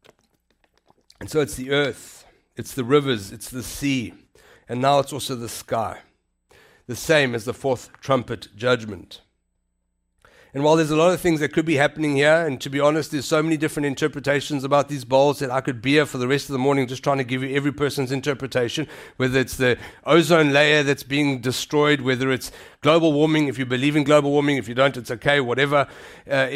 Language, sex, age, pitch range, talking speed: English, male, 60-79, 130-160 Hz, 210 wpm